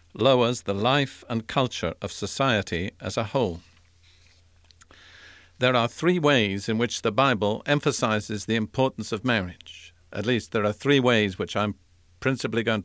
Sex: male